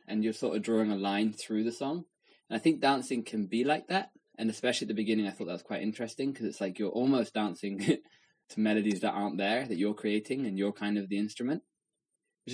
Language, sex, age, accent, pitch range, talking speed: English, male, 20-39, British, 105-125 Hz, 240 wpm